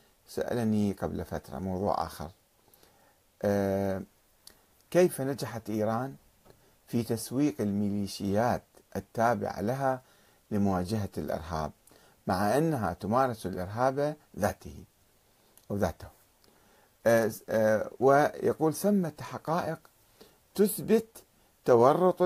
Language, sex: Arabic, male